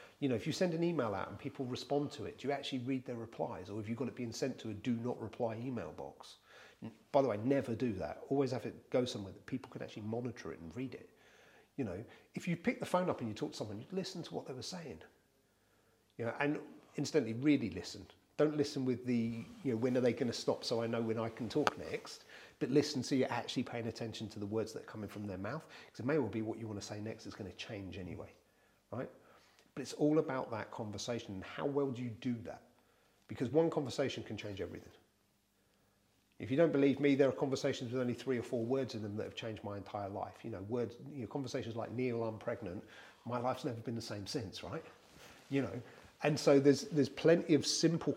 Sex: male